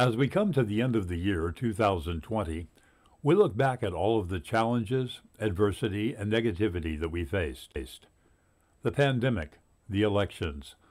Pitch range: 85-115 Hz